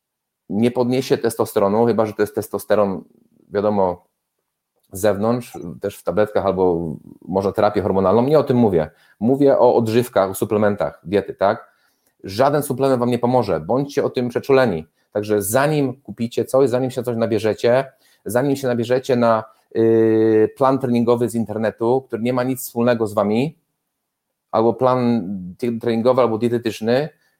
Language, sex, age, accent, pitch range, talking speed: Polish, male, 30-49, native, 115-140 Hz, 145 wpm